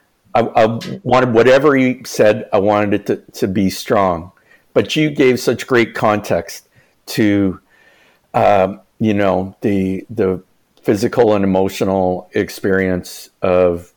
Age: 50-69